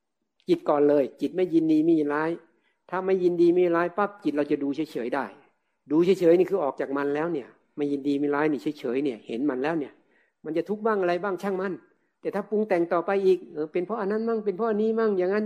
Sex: male